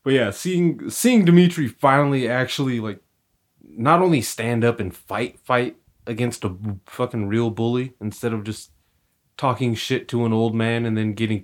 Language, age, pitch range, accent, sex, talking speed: English, 30-49, 100-135 Hz, American, male, 170 wpm